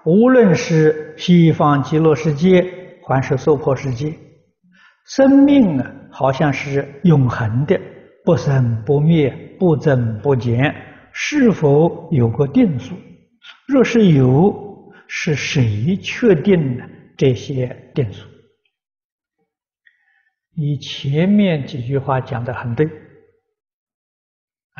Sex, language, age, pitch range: male, Chinese, 60-79, 135-190 Hz